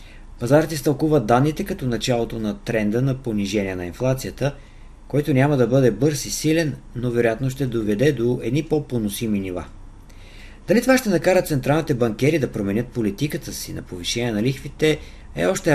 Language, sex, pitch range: Bulgarian, male, 110-150 Hz